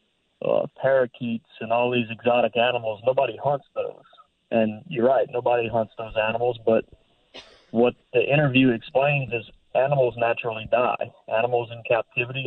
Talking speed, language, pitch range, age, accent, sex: 140 wpm, English, 110-125 Hz, 30-49, American, male